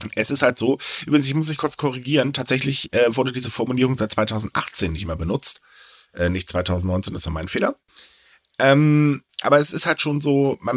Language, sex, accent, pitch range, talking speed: German, male, German, 95-135 Hz, 195 wpm